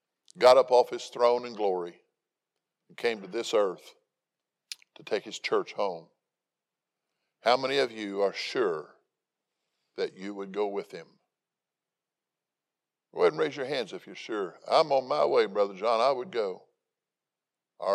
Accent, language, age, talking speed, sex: American, English, 50-69, 160 wpm, male